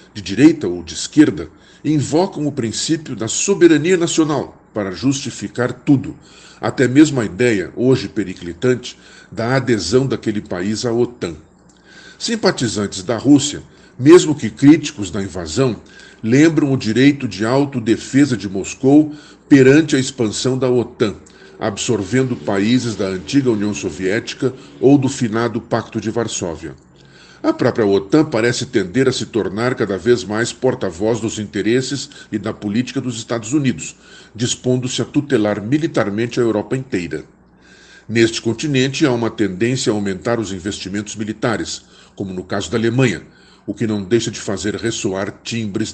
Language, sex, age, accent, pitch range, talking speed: Portuguese, male, 50-69, Brazilian, 105-135 Hz, 140 wpm